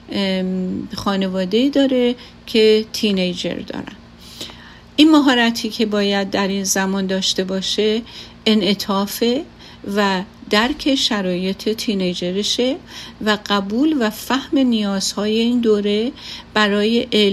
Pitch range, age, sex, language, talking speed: 185-225 Hz, 50-69, female, Persian, 95 wpm